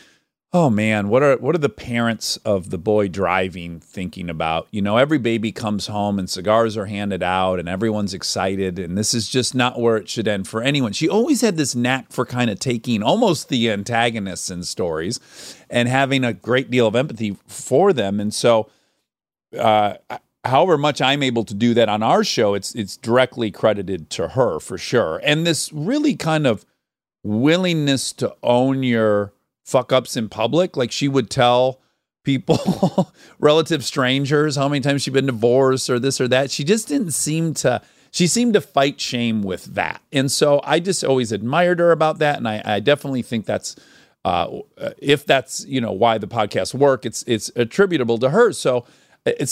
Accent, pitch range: American, 105-140 Hz